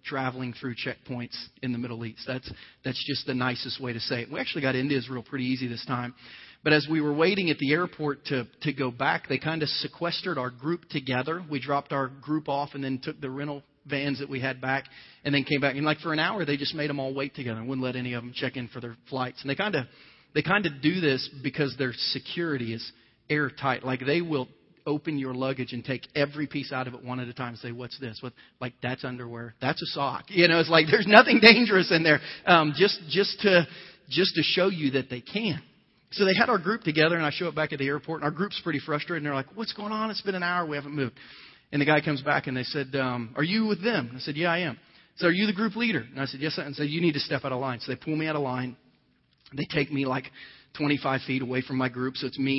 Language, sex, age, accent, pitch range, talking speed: English, male, 40-59, American, 130-155 Hz, 270 wpm